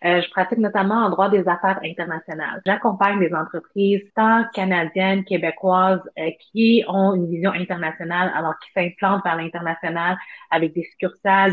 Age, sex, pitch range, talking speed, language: 30-49, female, 170-200 Hz, 150 wpm, French